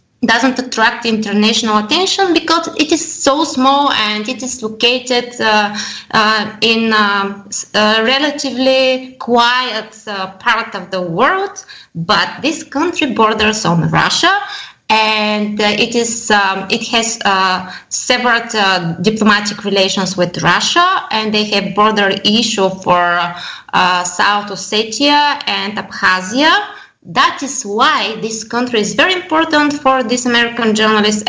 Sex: female